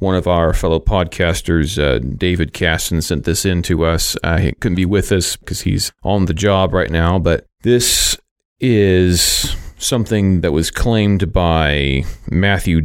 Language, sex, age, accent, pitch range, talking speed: English, male, 30-49, American, 80-95 Hz, 165 wpm